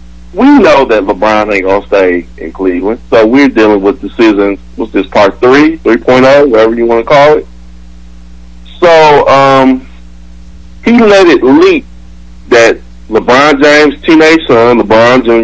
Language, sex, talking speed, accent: English, male, 150 wpm, American